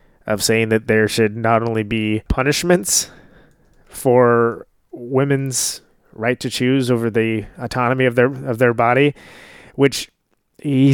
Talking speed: 130 wpm